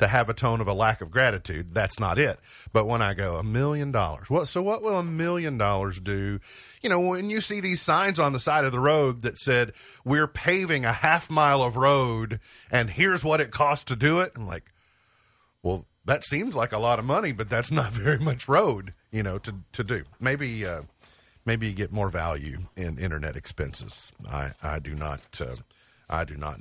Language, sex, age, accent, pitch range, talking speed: English, male, 40-59, American, 100-135 Hz, 220 wpm